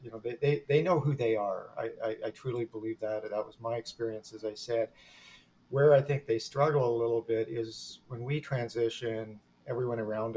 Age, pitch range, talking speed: 40-59, 105-120 Hz, 205 wpm